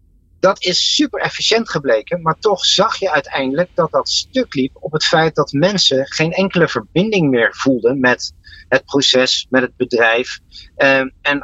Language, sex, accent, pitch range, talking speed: Dutch, male, Dutch, 120-175 Hz, 165 wpm